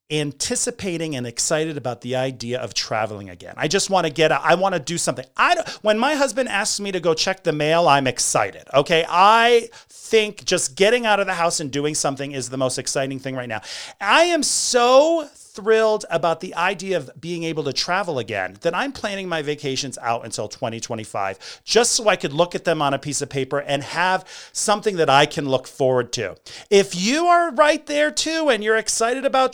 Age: 40-59